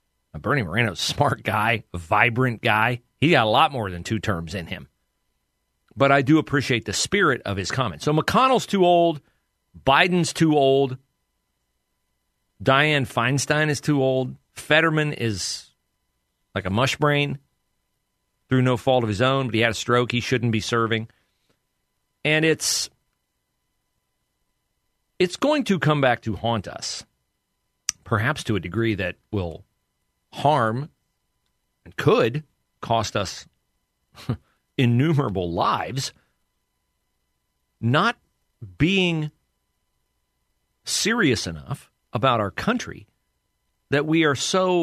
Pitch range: 85-145 Hz